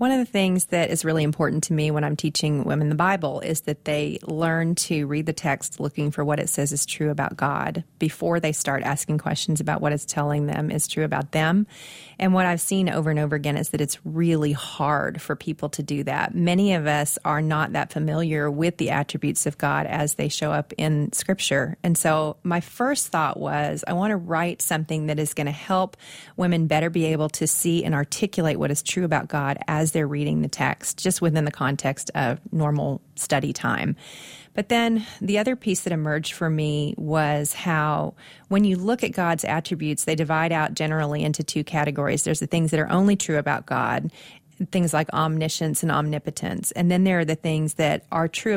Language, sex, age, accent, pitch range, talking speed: English, female, 30-49, American, 150-170 Hz, 215 wpm